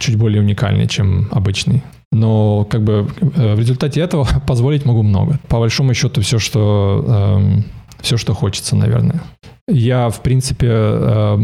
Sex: male